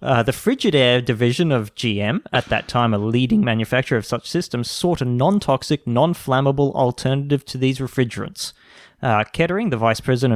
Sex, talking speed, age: male, 155 wpm, 20-39